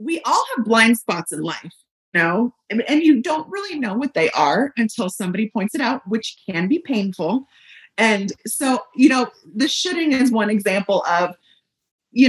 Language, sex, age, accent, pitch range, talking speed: English, female, 30-49, American, 195-260 Hz, 175 wpm